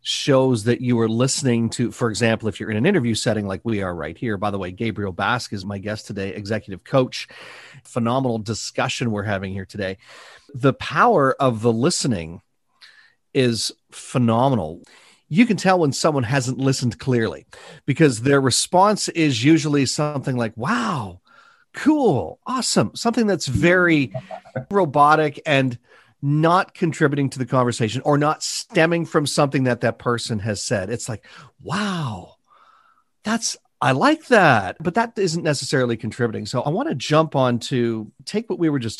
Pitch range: 115-150 Hz